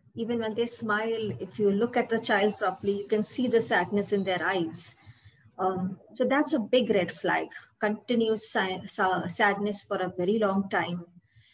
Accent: Indian